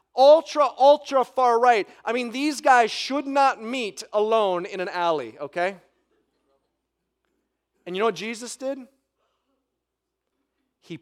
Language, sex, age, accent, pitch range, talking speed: English, male, 30-49, American, 205-290 Hz, 125 wpm